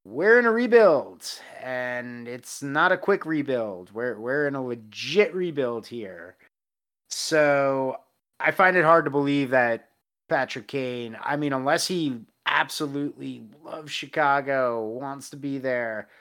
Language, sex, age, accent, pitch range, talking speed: English, male, 30-49, American, 120-145 Hz, 140 wpm